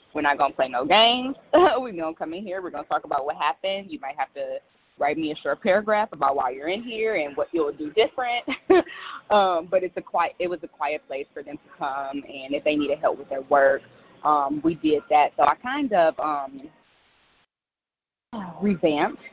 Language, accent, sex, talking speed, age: English, American, female, 210 wpm, 20-39